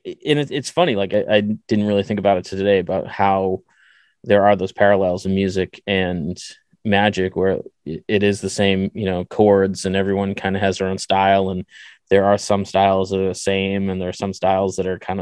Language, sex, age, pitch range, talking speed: English, male, 20-39, 95-105 Hz, 230 wpm